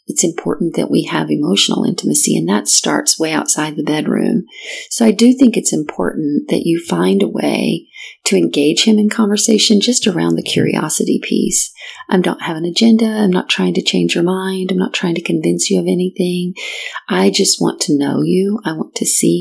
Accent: American